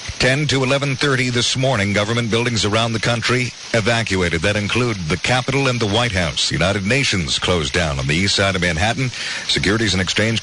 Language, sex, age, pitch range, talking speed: English, male, 50-69, 90-115 Hz, 185 wpm